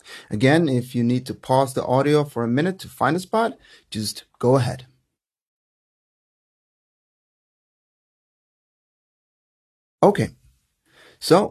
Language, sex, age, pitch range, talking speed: English, male, 30-49, 120-155 Hz, 105 wpm